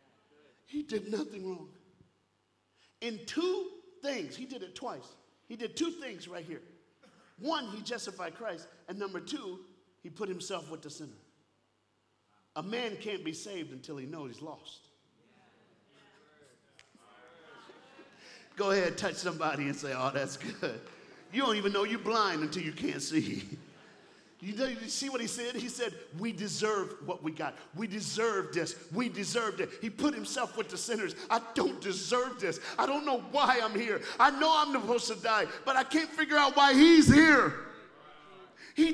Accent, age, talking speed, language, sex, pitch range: American, 50-69, 165 wpm, English, male, 150-250 Hz